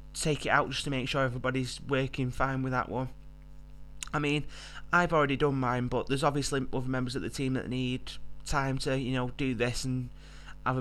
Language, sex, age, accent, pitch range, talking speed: English, male, 20-39, British, 125-145 Hz, 205 wpm